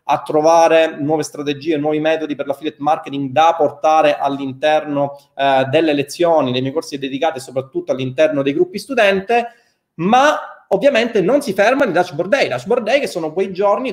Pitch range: 145-200 Hz